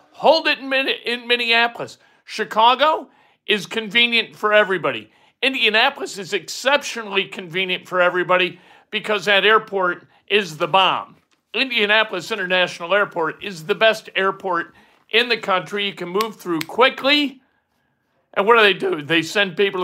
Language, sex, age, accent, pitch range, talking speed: English, male, 50-69, American, 180-220 Hz, 135 wpm